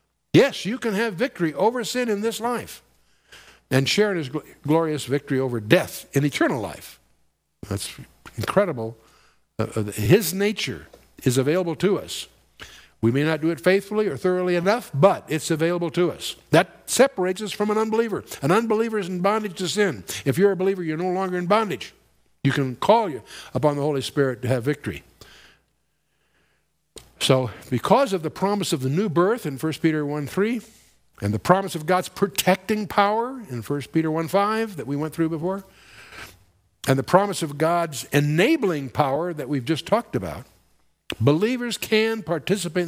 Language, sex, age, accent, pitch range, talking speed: English, male, 60-79, American, 135-195 Hz, 170 wpm